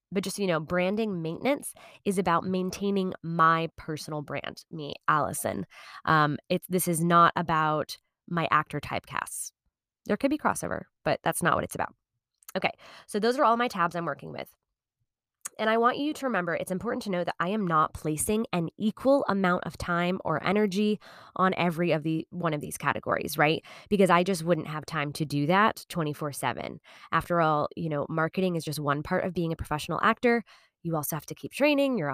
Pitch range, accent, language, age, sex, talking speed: 160-200 Hz, American, English, 20-39, female, 195 wpm